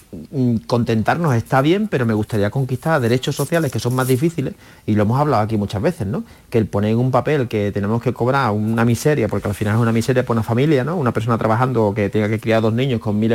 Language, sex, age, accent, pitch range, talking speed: Spanish, male, 30-49, Spanish, 110-145 Hz, 240 wpm